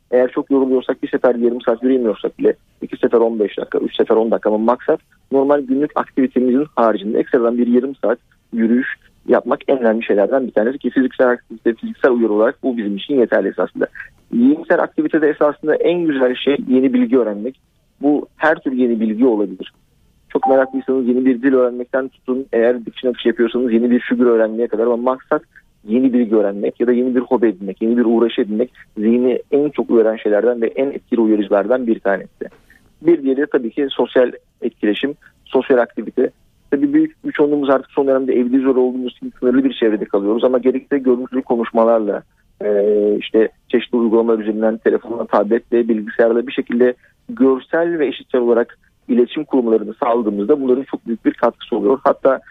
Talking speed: 175 wpm